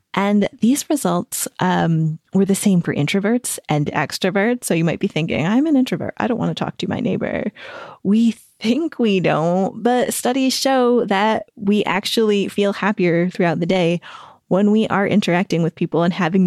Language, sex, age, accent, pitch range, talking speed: English, female, 20-39, American, 170-225 Hz, 180 wpm